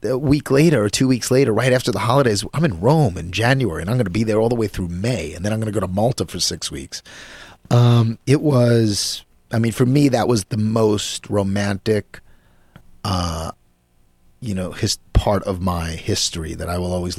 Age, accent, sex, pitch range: 30-49, American, male, 90-115 Hz